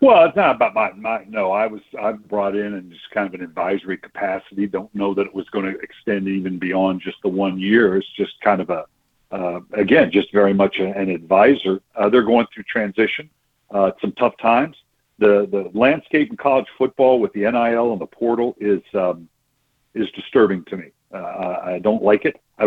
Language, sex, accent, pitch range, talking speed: English, male, American, 100-130 Hz, 205 wpm